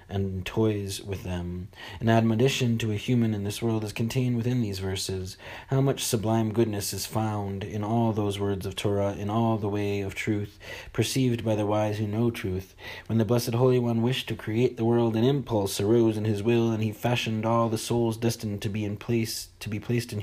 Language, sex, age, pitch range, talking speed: English, male, 30-49, 95-115 Hz, 210 wpm